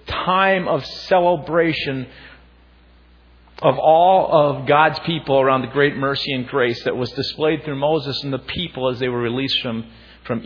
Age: 50-69